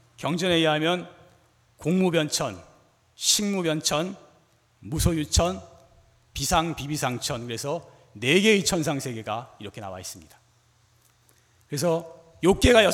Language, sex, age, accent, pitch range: Korean, male, 40-59, native, 115-180 Hz